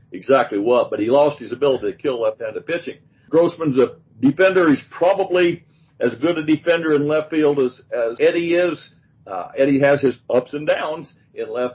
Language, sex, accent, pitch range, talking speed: English, male, American, 130-155 Hz, 185 wpm